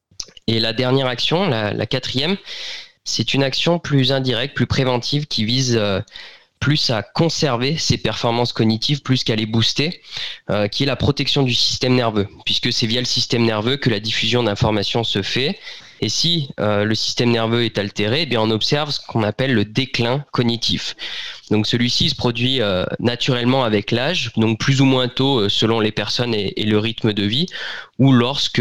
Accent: French